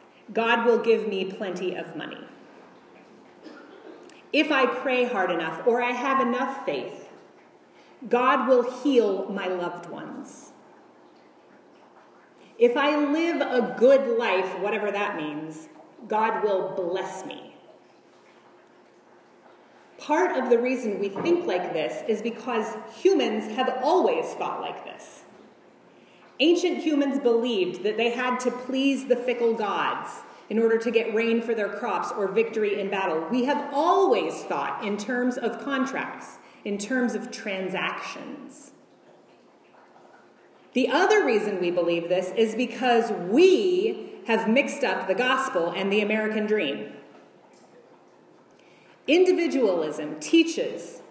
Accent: American